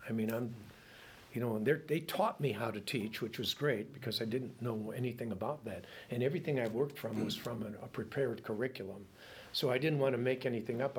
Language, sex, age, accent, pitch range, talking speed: English, male, 60-79, American, 110-130 Hz, 225 wpm